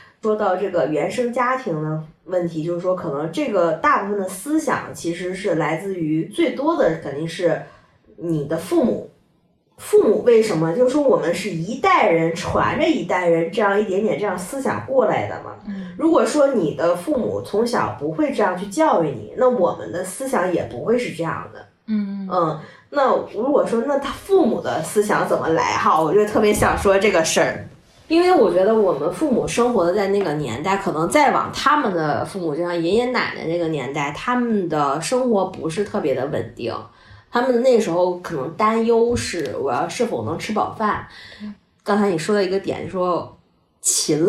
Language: Chinese